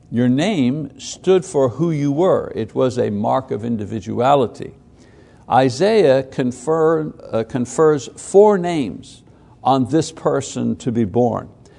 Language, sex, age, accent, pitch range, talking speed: English, male, 60-79, American, 125-160 Hz, 120 wpm